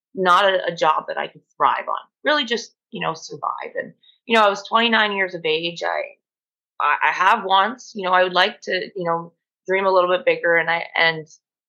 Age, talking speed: 20-39, 225 wpm